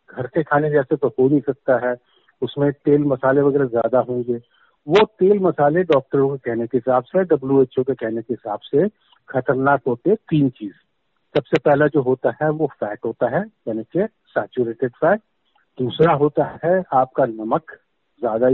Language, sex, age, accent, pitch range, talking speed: Hindi, male, 50-69, native, 130-165 Hz, 170 wpm